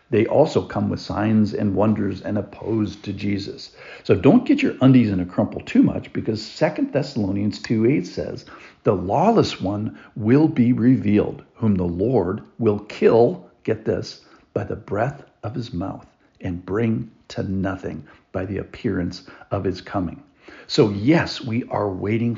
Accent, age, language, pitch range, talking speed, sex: American, 50-69, English, 100-120 Hz, 165 wpm, male